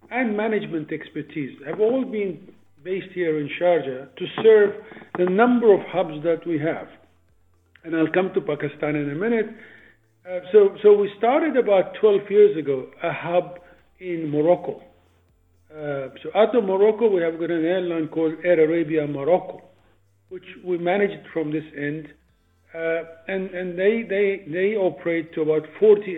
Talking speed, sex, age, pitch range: 160 wpm, male, 50-69, 150-185 Hz